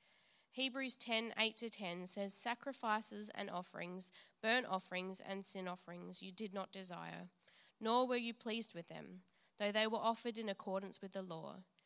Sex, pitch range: female, 185-230 Hz